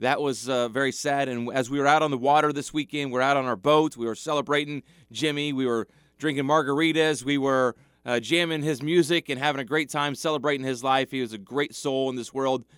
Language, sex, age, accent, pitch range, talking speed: English, male, 30-49, American, 130-160 Hz, 240 wpm